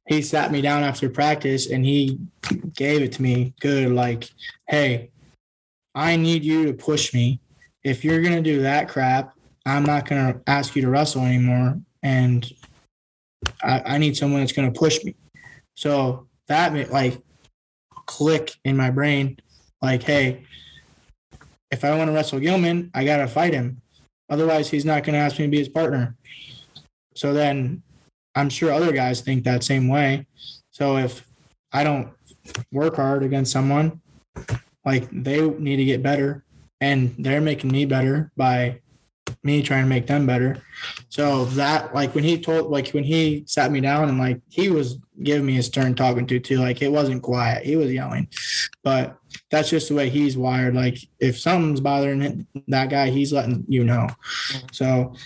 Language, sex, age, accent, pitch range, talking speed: English, male, 20-39, American, 130-150 Hz, 175 wpm